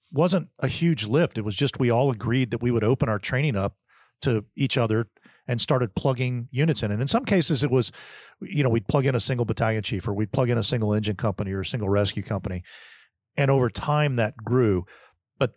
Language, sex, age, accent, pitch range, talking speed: English, male, 50-69, American, 105-135 Hz, 225 wpm